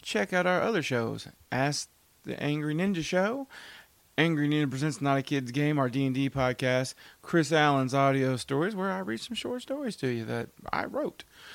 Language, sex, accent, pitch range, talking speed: English, male, American, 135-205 Hz, 180 wpm